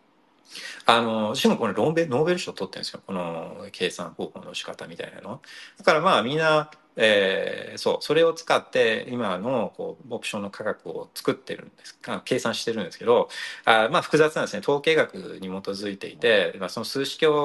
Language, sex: Japanese, male